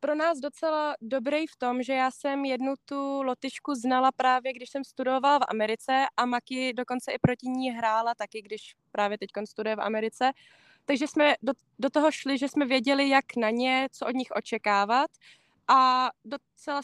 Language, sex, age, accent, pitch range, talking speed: Czech, female, 20-39, native, 225-270 Hz, 180 wpm